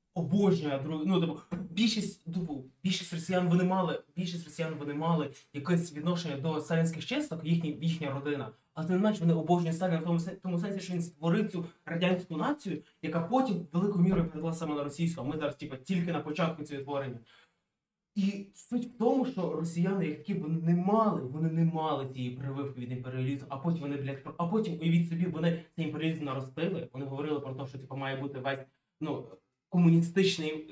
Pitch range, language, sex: 145-180 Hz, Ukrainian, male